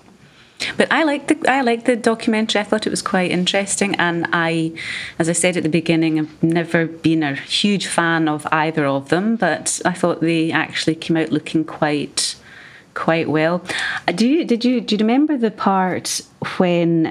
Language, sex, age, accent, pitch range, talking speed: English, female, 30-49, British, 160-185 Hz, 185 wpm